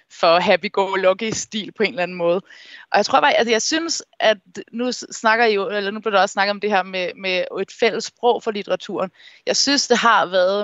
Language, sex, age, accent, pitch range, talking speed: Danish, female, 20-39, native, 180-215 Hz, 220 wpm